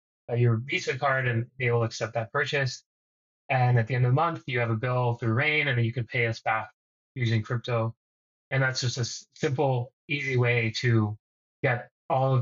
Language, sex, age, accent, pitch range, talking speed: English, male, 20-39, American, 115-130 Hz, 205 wpm